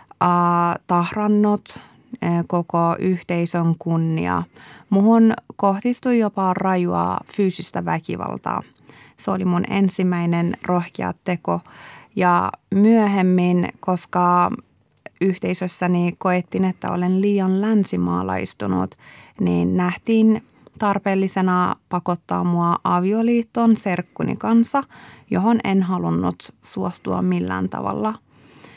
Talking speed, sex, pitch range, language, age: 80 wpm, female, 175-195 Hz, Finnish, 20-39